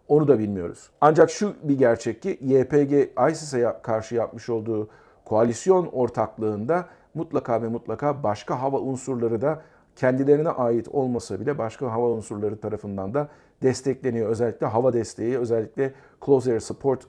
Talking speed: 135 wpm